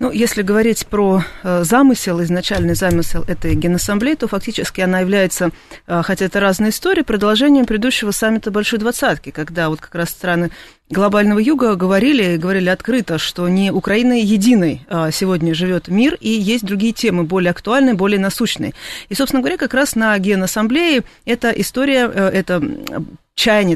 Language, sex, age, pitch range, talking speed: Russian, female, 30-49, 180-230 Hz, 145 wpm